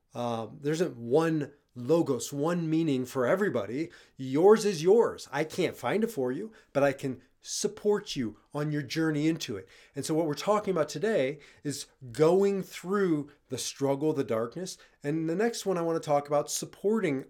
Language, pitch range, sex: English, 135-170 Hz, male